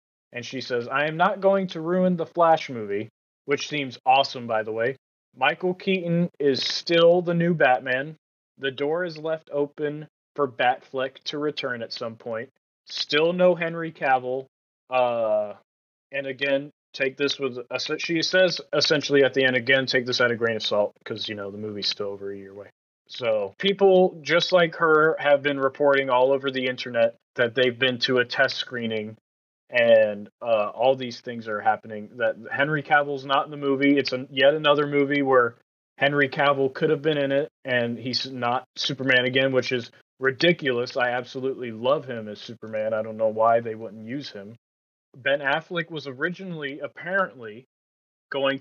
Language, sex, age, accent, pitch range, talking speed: English, male, 30-49, American, 120-145 Hz, 180 wpm